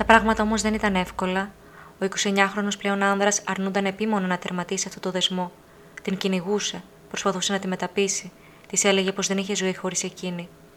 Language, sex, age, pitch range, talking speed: Greek, female, 20-39, 180-200 Hz, 175 wpm